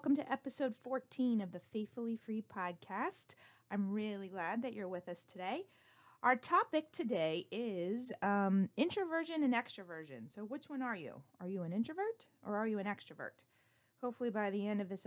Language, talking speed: English, 180 wpm